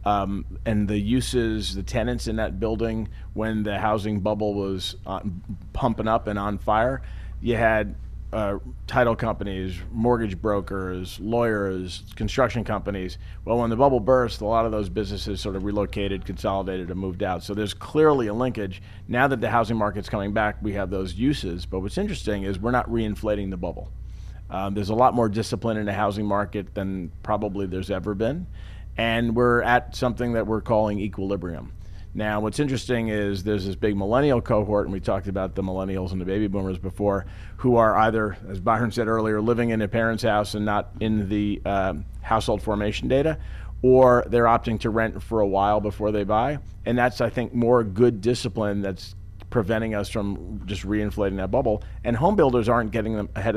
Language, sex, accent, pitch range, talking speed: English, male, American, 95-115 Hz, 185 wpm